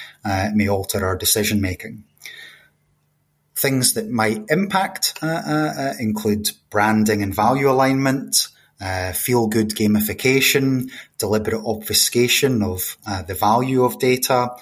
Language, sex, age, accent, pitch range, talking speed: English, male, 30-49, British, 100-125 Hz, 115 wpm